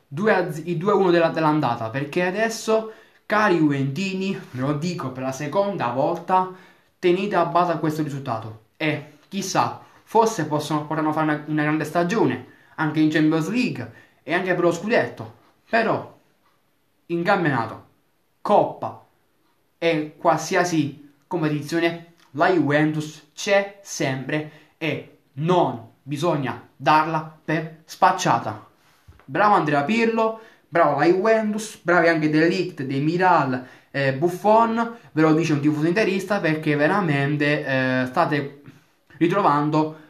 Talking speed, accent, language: 120 wpm, native, Italian